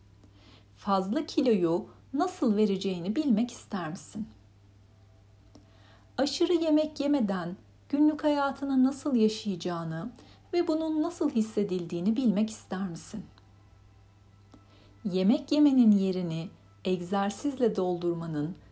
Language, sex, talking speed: Turkish, female, 85 wpm